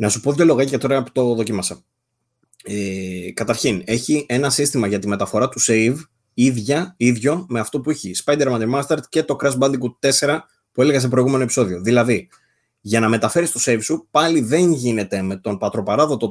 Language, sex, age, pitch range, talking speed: Greek, male, 20-39, 105-135 Hz, 185 wpm